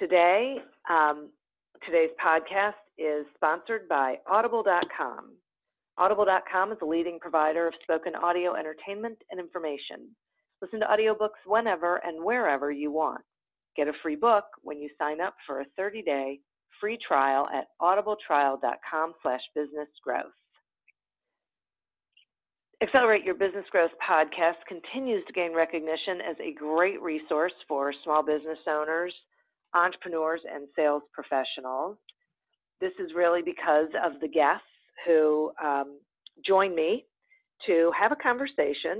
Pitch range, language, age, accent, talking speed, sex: 155-205 Hz, English, 40-59, American, 125 wpm, female